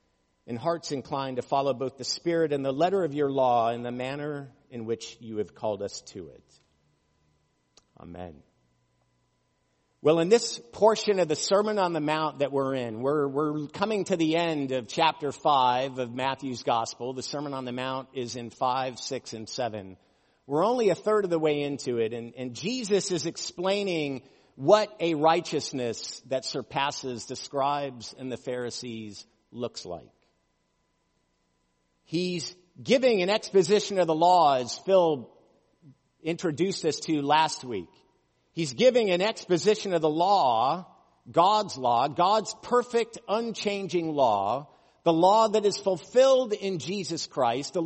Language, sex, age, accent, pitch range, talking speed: English, male, 50-69, American, 125-185 Hz, 155 wpm